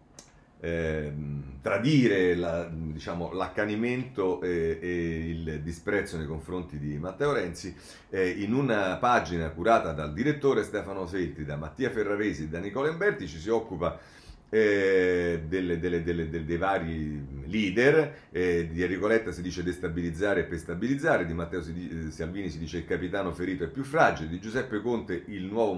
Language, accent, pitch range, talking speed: Italian, native, 85-140 Hz, 150 wpm